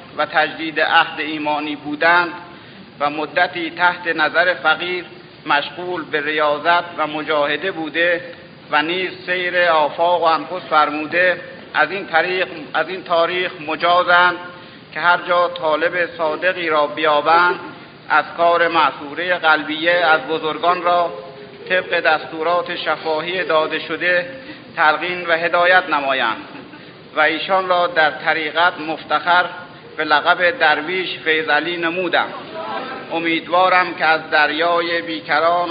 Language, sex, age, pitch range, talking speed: Persian, male, 50-69, 155-175 Hz, 110 wpm